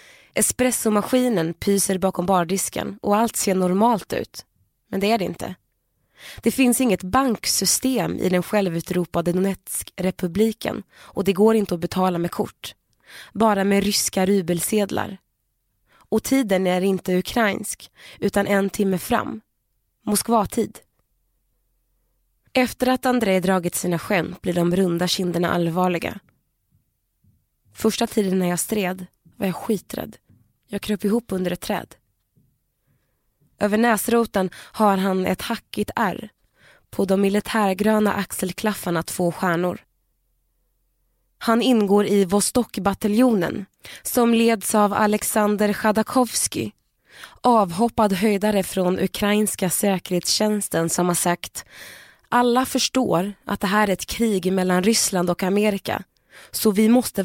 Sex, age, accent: female, 20-39, native